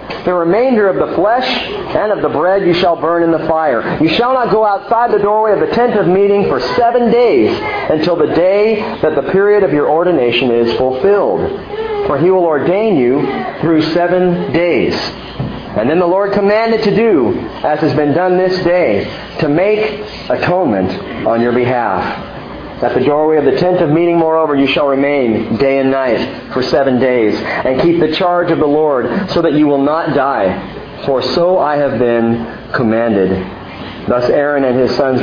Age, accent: 40-59, American